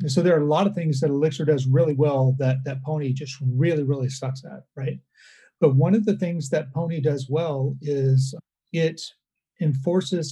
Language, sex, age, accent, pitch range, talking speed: English, male, 40-59, American, 135-160 Hz, 190 wpm